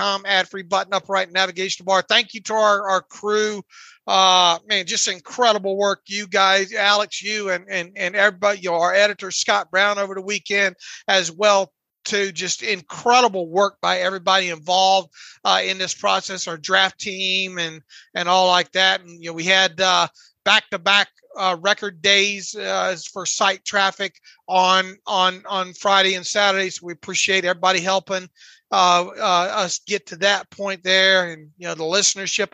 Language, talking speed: English, 170 wpm